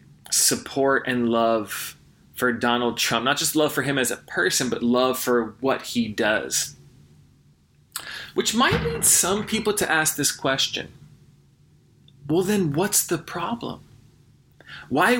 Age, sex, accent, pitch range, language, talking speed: 20-39, male, American, 125-155 Hz, English, 140 wpm